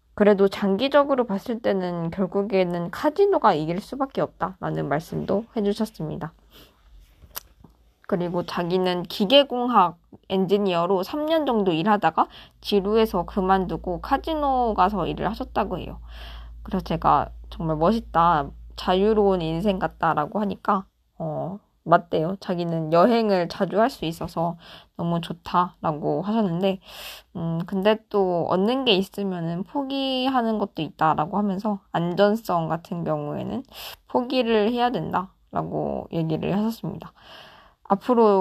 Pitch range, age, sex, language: 170-220 Hz, 20-39, female, Korean